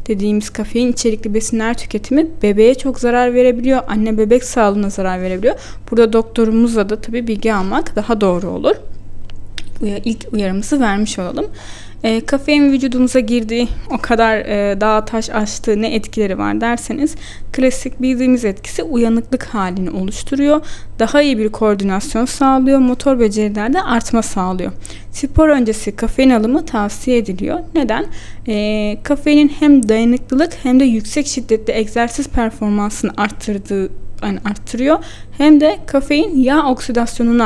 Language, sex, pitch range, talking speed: Turkish, female, 210-260 Hz, 130 wpm